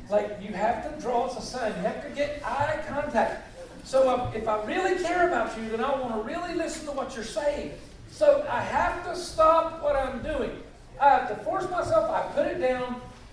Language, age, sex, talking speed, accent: English, 50-69, male, 210 wpm, American